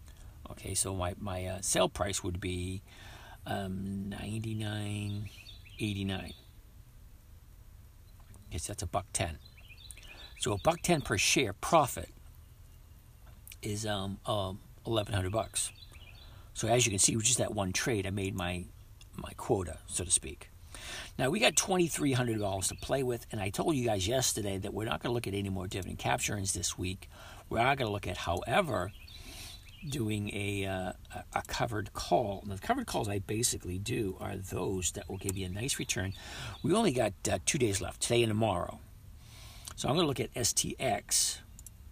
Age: 50-69